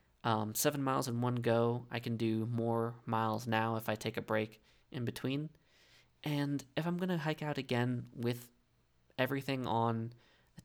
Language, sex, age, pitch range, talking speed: English, male, 20-39, 105-120 Hz, 175 wpm